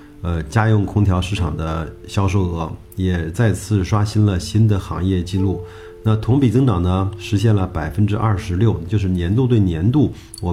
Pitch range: 90-110 Hz